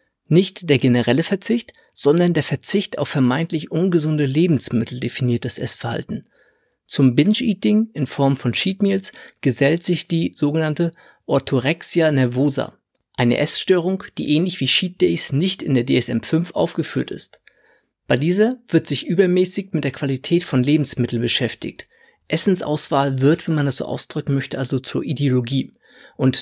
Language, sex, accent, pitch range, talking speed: German, male, German, 135-175 Hz, 140 wpm